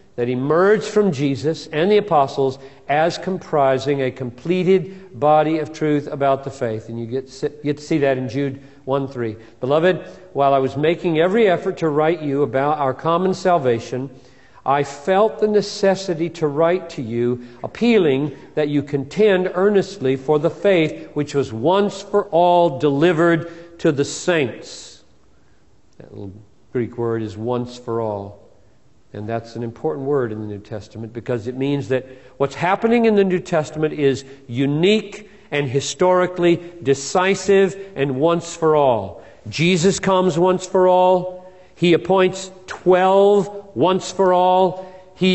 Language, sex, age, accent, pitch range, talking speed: English, male, 50-69, American, 140-185 Hz, 150 wpm